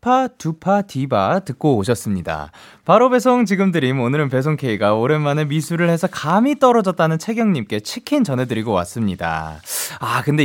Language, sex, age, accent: Korean, male, 20-39, native